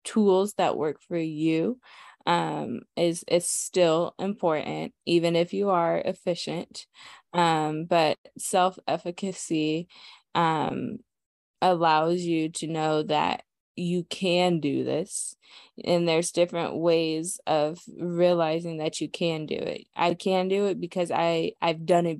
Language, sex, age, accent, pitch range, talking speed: English, female, 20-39, American, 160-185 Hz, 130 wpm